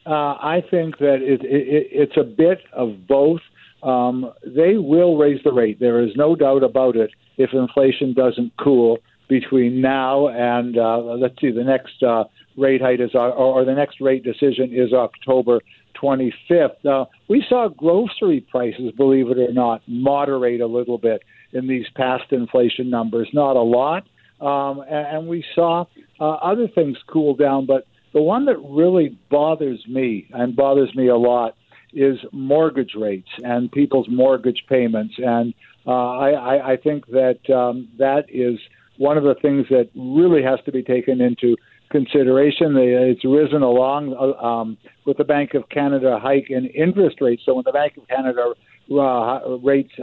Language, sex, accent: English, male, American